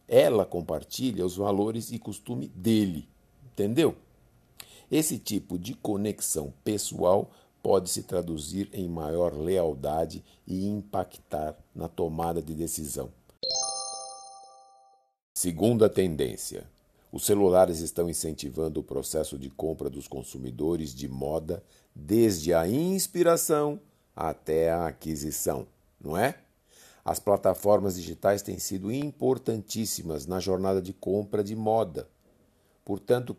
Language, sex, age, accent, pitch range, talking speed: Portuguese, male, 60-79, Brazilian, 85-110 Hz, 110 wpm